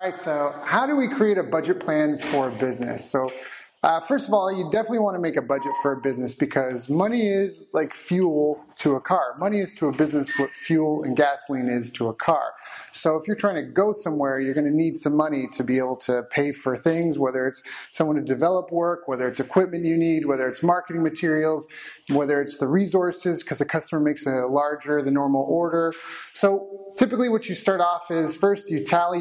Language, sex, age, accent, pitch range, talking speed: English, male, 30-49, American, 140-180 Hz, 220 wpm